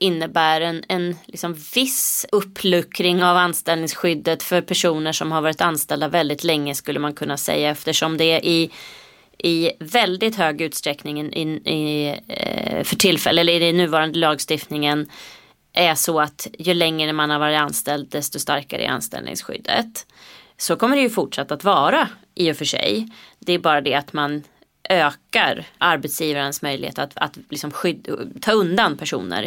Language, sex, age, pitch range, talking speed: Swedish, female, 20-39, 150-180 Hz, 155 wpm